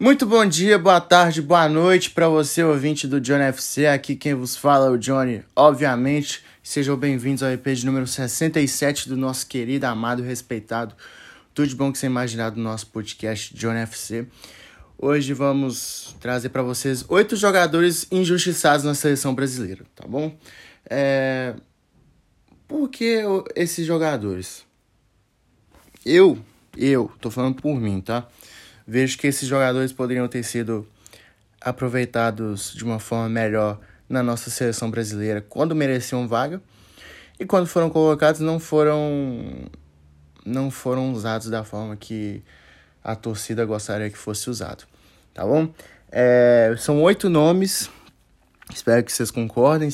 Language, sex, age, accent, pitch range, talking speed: Portuguese, male, 20-39, Brazilian, 115-145 Hz, 145 wpm